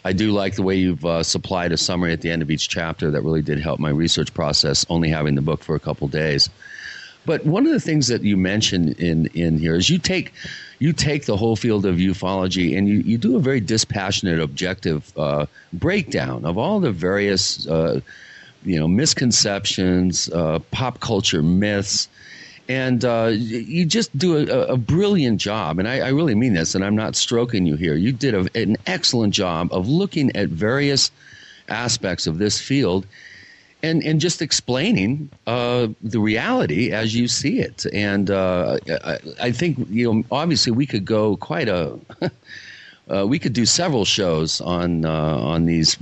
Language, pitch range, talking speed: English, 85-125 Hz, 185 wpm